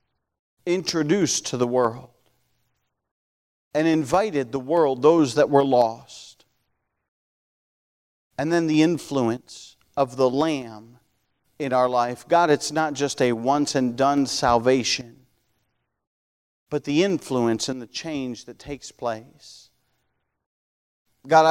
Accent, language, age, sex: American, English, 50-69, male